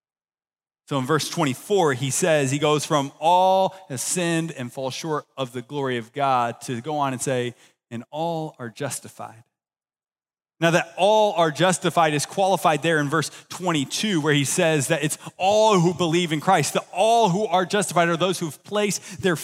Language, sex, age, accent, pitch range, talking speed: English, male, 30-49, American, 150-185 Hz, 185 wpm